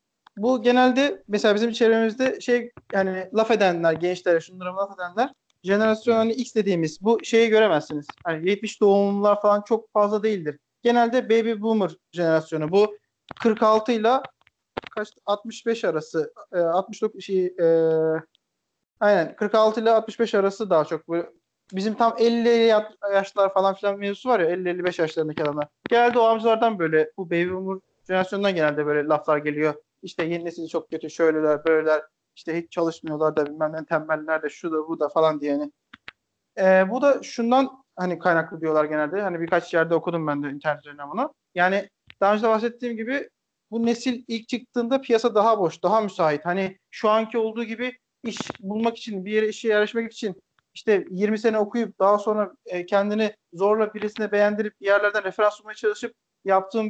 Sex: male